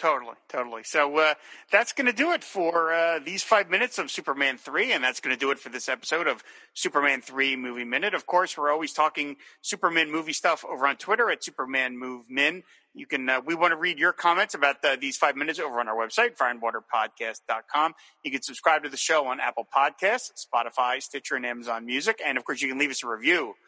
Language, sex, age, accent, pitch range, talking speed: English, male, 40-59, American, 130-175 Hz, 225 wpm